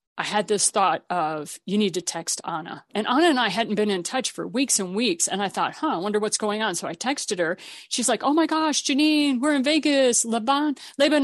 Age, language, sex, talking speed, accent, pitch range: 40-59, English, female, 240 wpm, American, 195-265 Hz